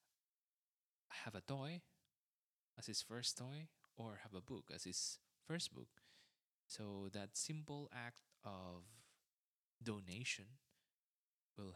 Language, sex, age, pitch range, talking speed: English, male, 20-39, 95-125 Hz, 110 wpm